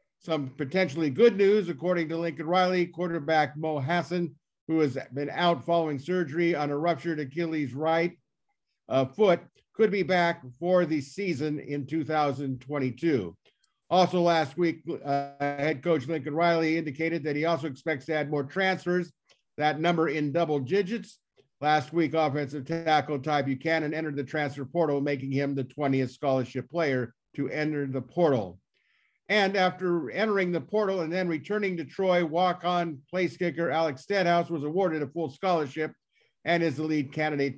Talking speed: 160 wpm